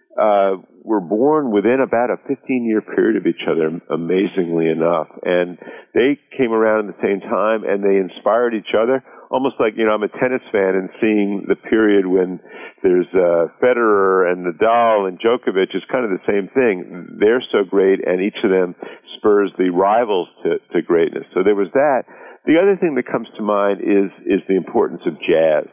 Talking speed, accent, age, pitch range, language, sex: 190 wpm, American, 50-69, 90-115 Hz, English, male